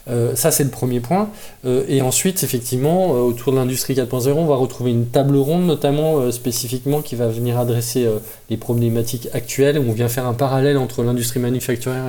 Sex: male